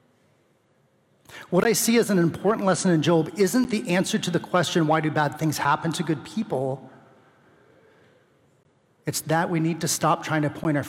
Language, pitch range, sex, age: English, 145-180 Hz, male, 40-59